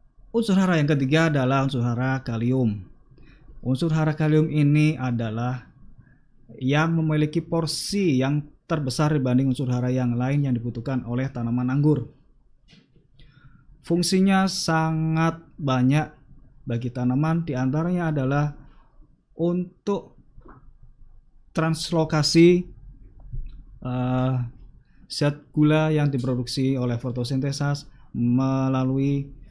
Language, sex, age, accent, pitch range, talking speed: Indonesian, male, 20-39, native, 130-155 Hz, 95 wpm